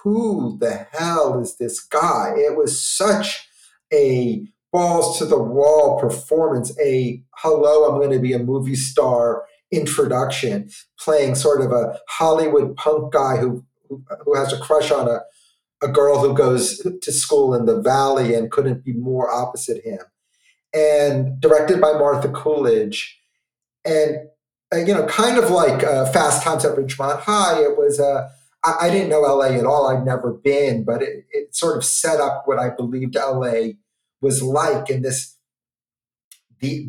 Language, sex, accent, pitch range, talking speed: English, male, American, 130-185 Hz, 165 wpm